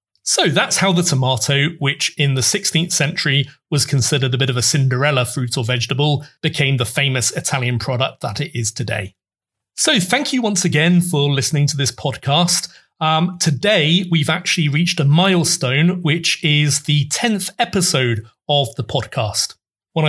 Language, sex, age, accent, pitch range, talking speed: English, male, 30-49, British, 135-165 Hz, 165 wpm